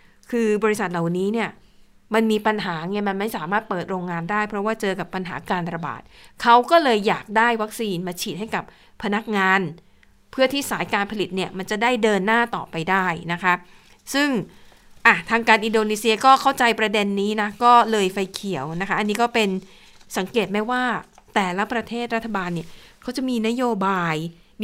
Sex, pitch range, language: female, 190-230 Hz, Thai